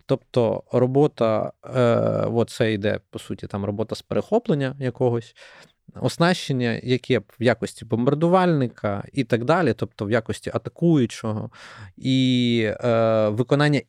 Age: 20-39